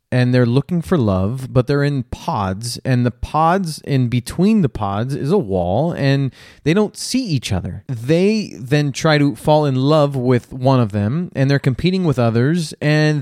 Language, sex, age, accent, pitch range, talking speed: English, male, 30-49, American, 110-150 Hz, 190 wpm